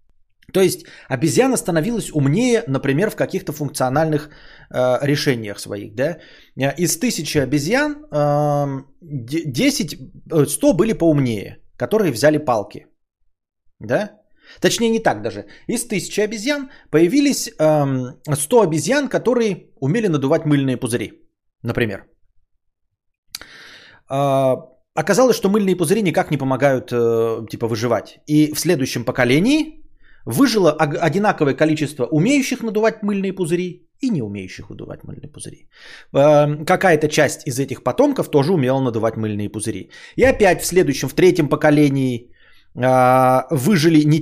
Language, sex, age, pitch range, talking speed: Bulgarian, male, 30-49, 130-195 Hz, 120 wpm